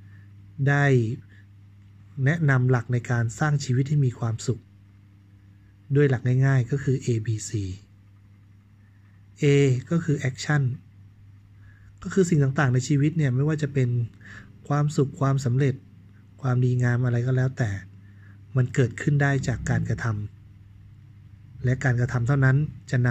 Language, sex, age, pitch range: Thai, male, 20-39, 100-135 Hz